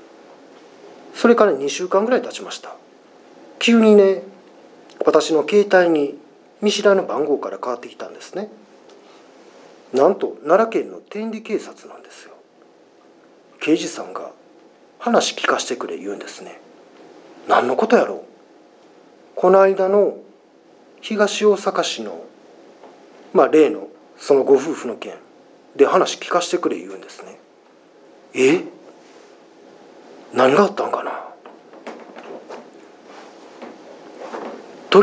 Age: 40-59